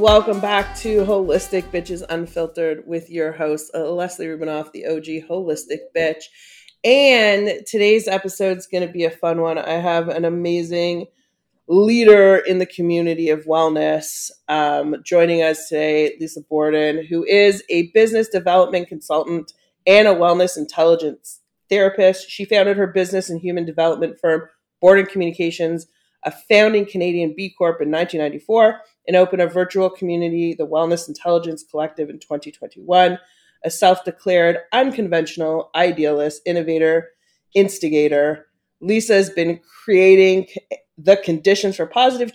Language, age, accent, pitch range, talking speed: English, 30-49, American, 160-190 Hz, 135 wpm